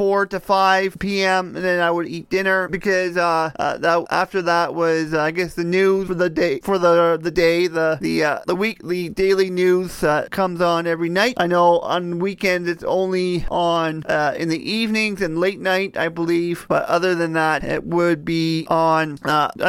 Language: English